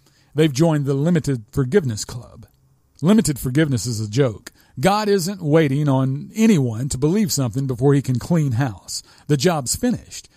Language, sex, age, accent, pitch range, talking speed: English, male, 40-59, American, 125-165 Hz, 155 wpm